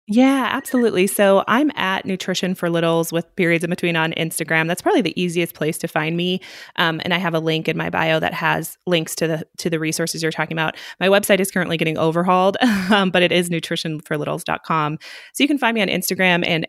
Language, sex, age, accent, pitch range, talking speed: English, female, 20-39, American, 160-190 Hz, 220 wpm